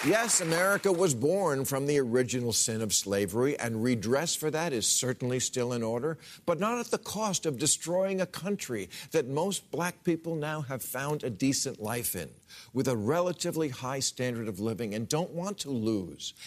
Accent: American